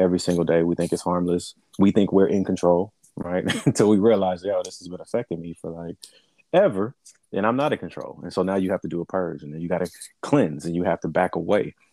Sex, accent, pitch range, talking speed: male, American, 85-100 Hz, 255 wpm